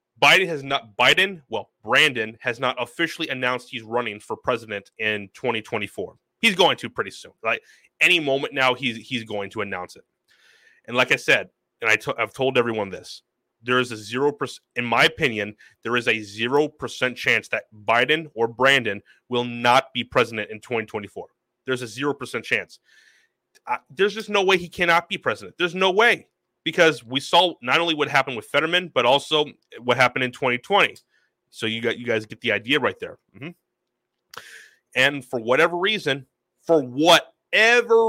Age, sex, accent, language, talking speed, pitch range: 30-49, male, American, English, 180 wpm, 115-150 Hz